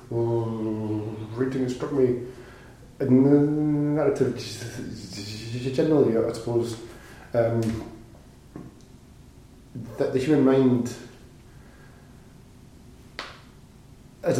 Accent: British